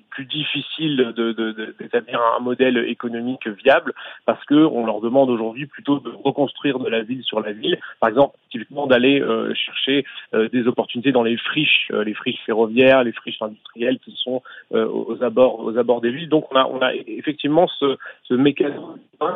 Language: French